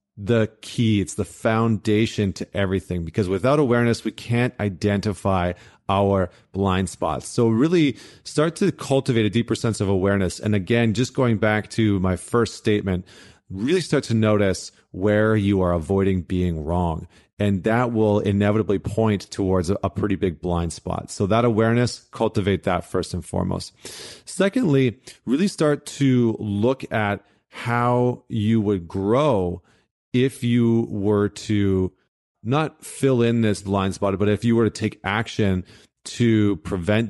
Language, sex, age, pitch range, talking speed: English, male, 30-49, 95-115 Hz, 150 wpm